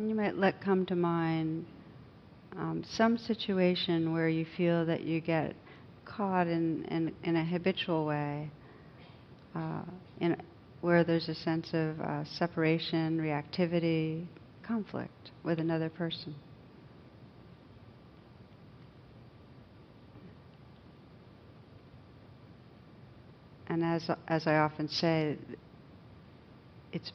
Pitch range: 135-165 Hz